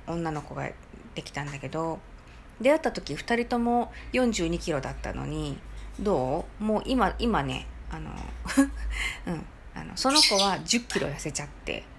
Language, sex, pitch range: Japanese, female, 190-260 Hz